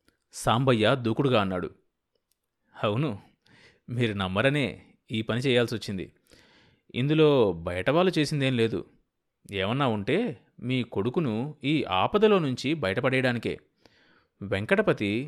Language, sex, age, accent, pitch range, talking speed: Telugu, male, 30-49, native, 110-145 Hz, 90 wpm